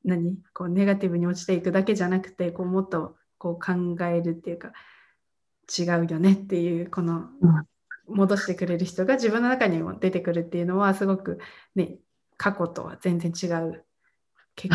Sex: female